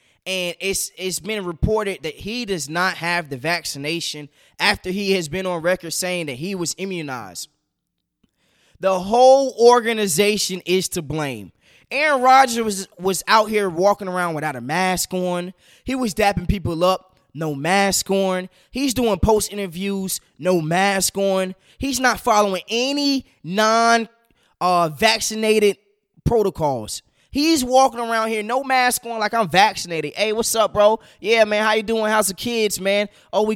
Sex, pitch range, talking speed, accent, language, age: male, 180-235 Hz, 155 wpm, American, English, 20-39